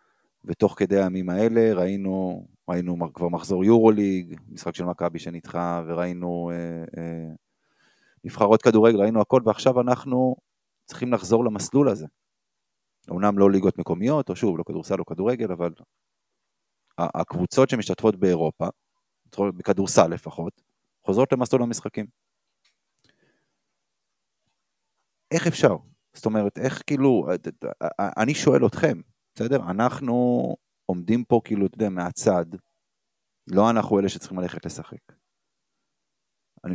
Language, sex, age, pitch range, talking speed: Hebrew, male, 30-49, 90-115 Hz, 120 wpm